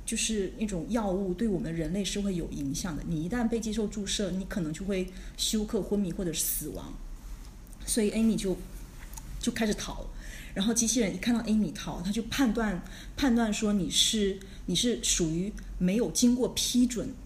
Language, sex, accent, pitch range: Chinese, female, native, 175-225 Hz